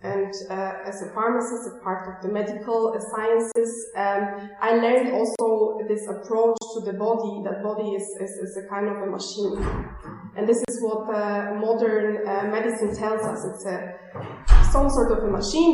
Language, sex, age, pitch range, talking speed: English, female, 20-39, 205-235 Hz, 180 wpm